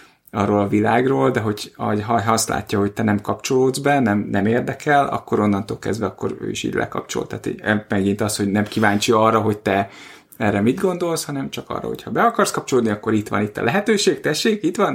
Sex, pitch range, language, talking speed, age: male, 100-125 Hz, Hungarian, 220 wpm, 30-49